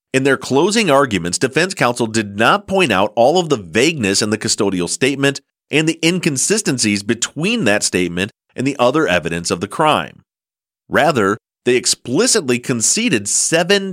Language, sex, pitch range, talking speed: English, male, 105-165 Hz, 155 wpm